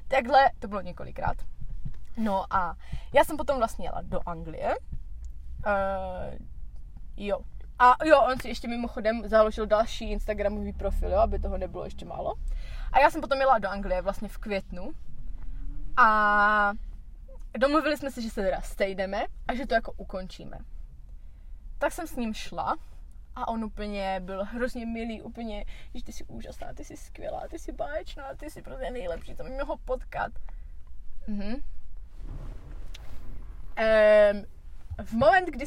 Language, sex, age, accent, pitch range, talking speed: Czech, female, 20-39, native, 205-250 Hz, 150 wpm